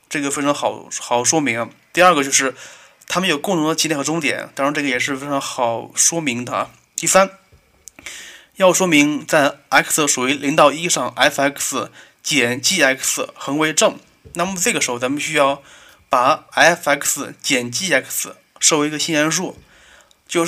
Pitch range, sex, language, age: 135-170 Hz, male, Chinese, 20-39